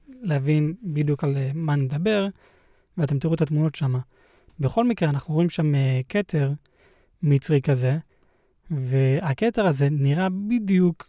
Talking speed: 120 wpm